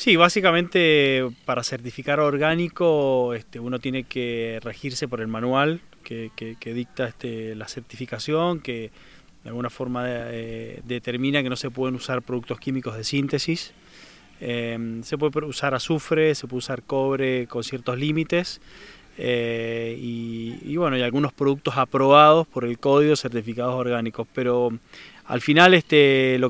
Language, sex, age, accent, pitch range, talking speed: Spanish, male, 20-39, Argentinian, 125-150 Hz, 150 wpm